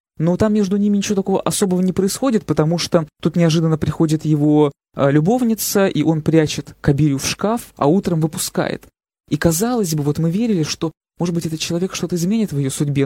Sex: male